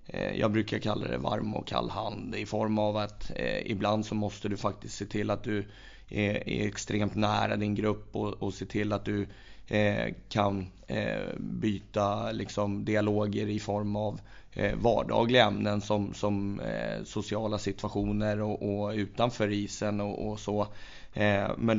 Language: Swedish